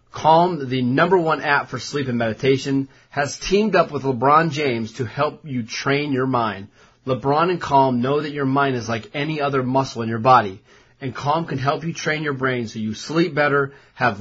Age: 30-49